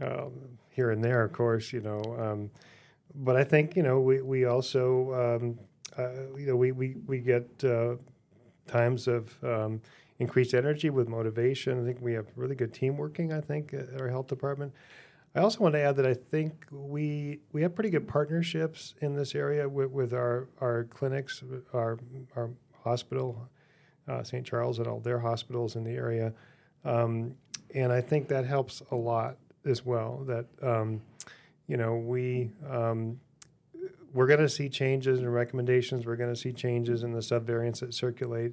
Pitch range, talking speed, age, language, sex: 120-135 Hz, 180 wpm, 40-59, English, male